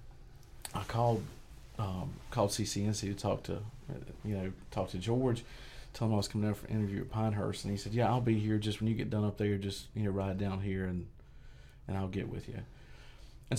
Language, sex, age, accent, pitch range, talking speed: English, male, 40-59, American, 100-120 Hz, 225 wpm